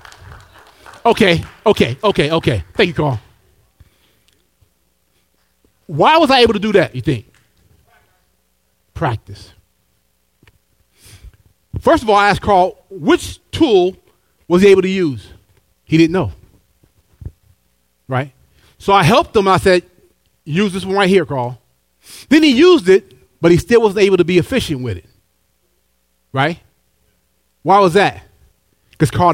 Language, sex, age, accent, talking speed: English, male, 30-49, American, 135 wpm